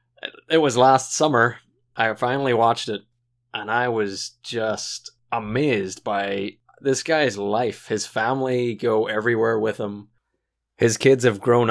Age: 20-39